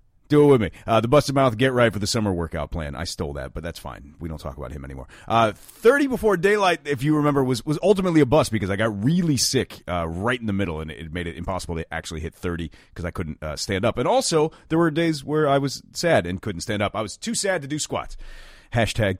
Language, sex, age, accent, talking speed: English, male, 30-49, American, 265 wpm